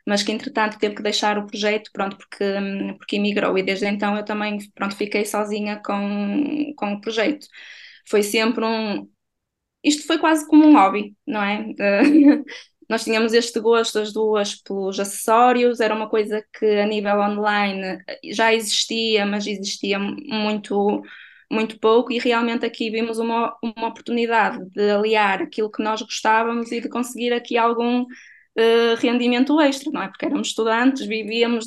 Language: Portuguese